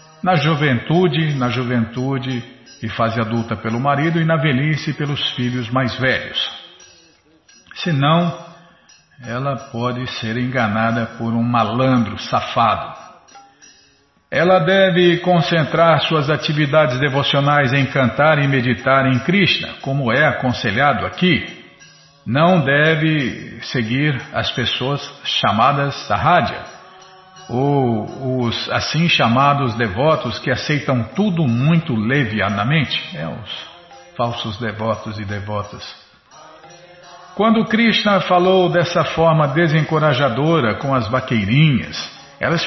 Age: 50-69